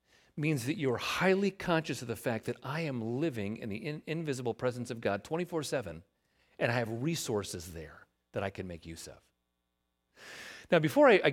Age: 40-59